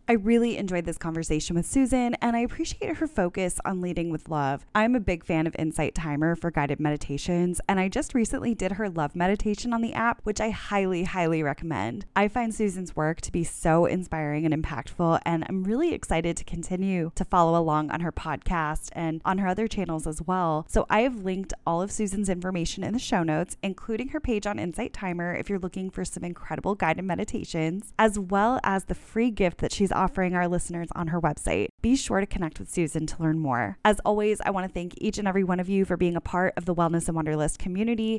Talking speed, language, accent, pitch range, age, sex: 225 wpm, English, American, 165-215 Hz, 10-29, female